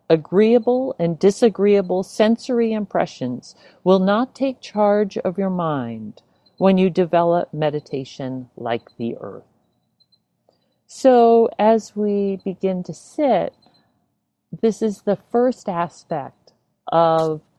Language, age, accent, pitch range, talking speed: English, 40-59, American, 145-205 Hz, 105 wpm